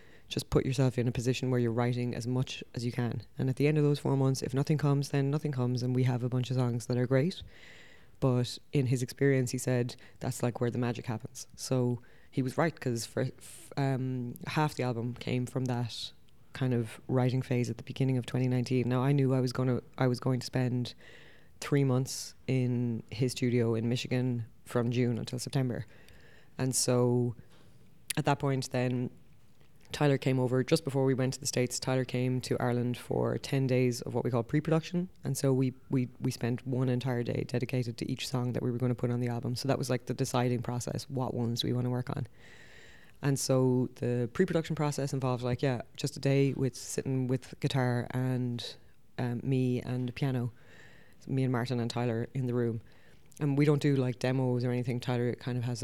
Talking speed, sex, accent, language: 215 wpm, female, Irish, English